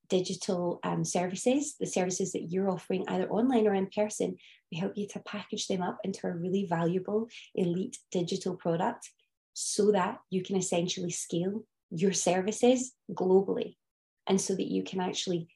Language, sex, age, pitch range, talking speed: English, female, 20-39, 180-215 Hz, 160 wpm